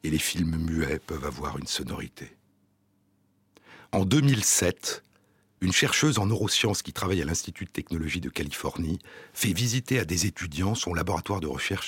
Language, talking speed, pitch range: French, 155 wpm, 85-110 Hz